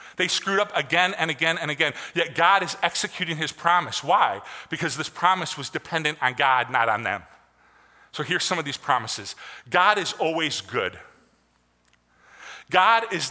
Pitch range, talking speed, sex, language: 170-215 Hz, 165 wpm, male, English